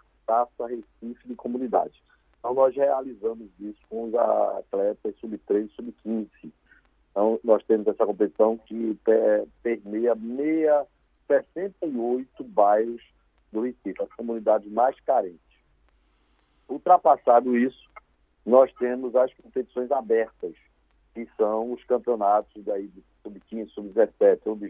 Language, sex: Portuguese, male